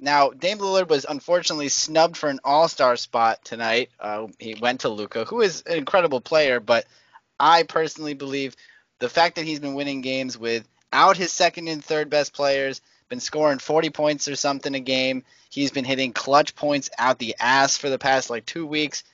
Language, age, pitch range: English, 20-39, 120-160 Hz